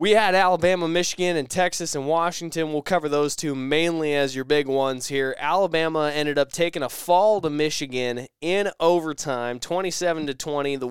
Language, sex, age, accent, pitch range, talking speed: English, male, 20-39, American, 140-170 Hz, 165 wpm